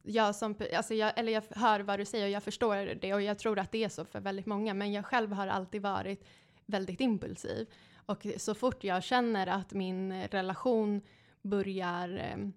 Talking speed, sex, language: 180 wpm, female, English